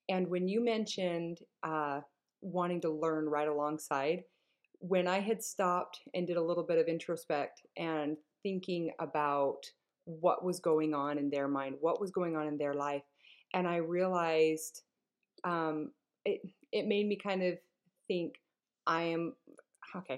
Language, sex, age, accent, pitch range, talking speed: English, female, 30-49, American, 155-180 Hz, 155 wpm